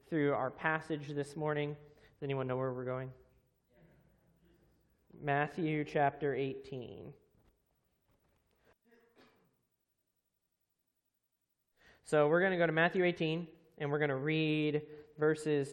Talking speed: 105 wpm